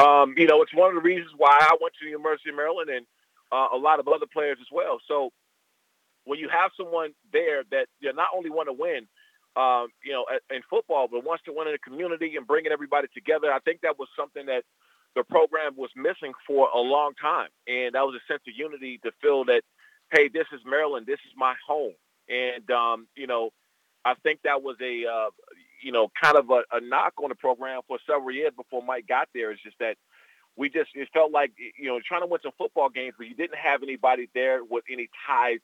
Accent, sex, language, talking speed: American, male, English, 235 wpm